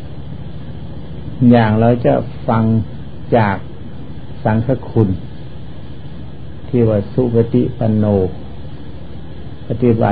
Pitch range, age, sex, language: 105-120 Hz, 60-79, male, Thai